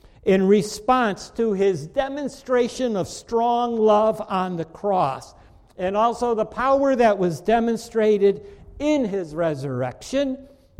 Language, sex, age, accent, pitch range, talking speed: English, male, 60-79, American, 160-225 Hz, 115 wpm